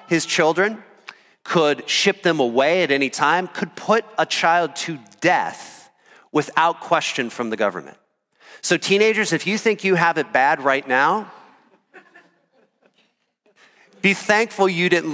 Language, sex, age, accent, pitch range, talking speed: English, male, 40-59, American, 135-170 Hz, 140 wpm